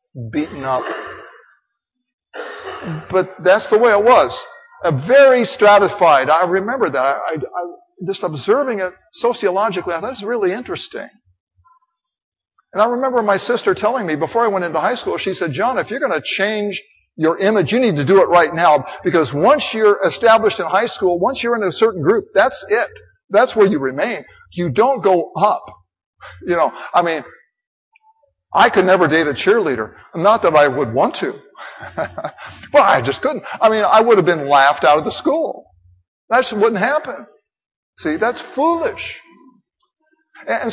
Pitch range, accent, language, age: 170-250 Hz, American, English, 50-69